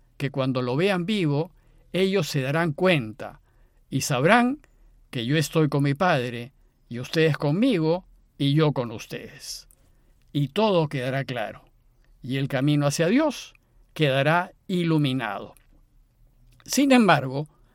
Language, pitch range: Spanish, 130-190 Hz